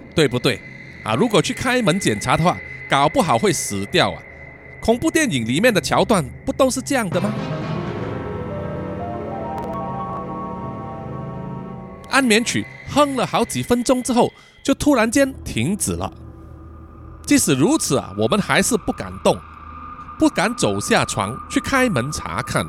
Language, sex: Chinese, male